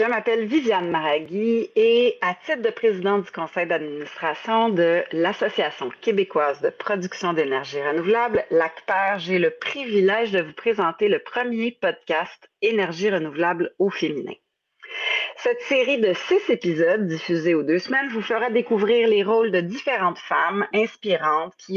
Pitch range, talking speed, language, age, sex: 175-240 Hz, 150 wpm, French, 40-59, female